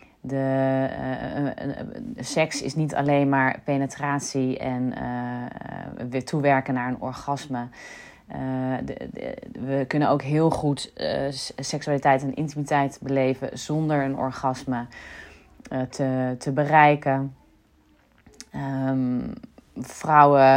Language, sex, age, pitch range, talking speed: Dutch, female, 30-49, 135-165 Hz, 110 wpm